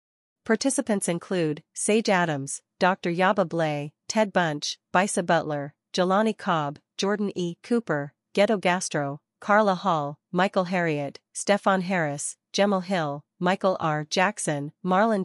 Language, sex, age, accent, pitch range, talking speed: English, female, 40-59, American, 155-195 Hz, 120 wpm